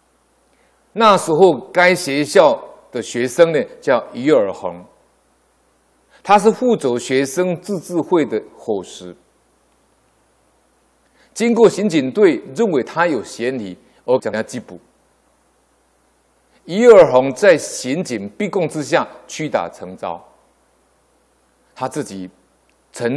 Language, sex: Chinese, male